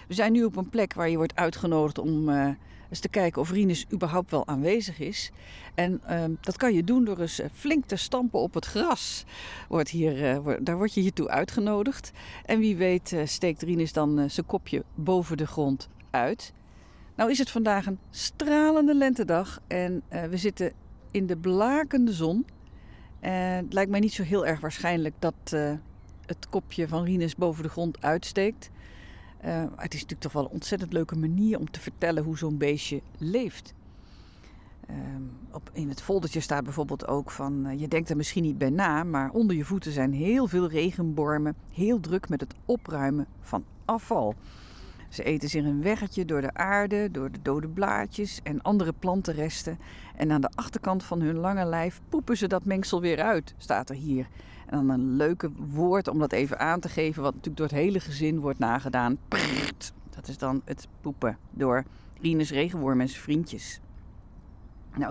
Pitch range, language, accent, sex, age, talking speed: 145-195 Hz, Dutch, Dutch, female, 50-69, 185 wpm